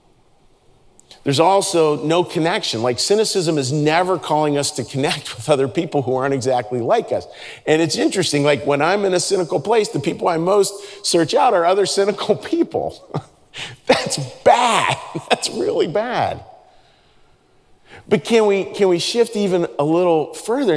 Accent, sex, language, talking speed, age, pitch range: American, male, English, 160 wpm, 40-59, 140-200 Hz